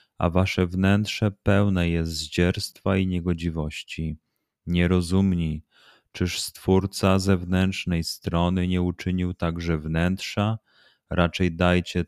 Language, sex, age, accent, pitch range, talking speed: Polish, male, 30-49, native, 85-100 Hz, 100 wpm